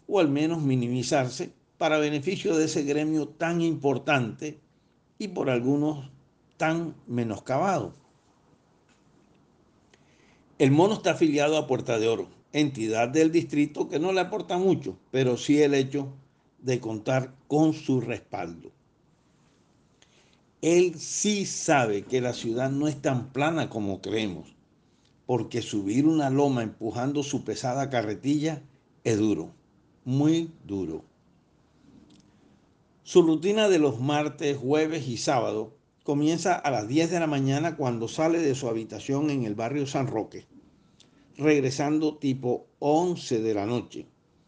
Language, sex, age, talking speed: Spanish, male, 60-79, 130 wpm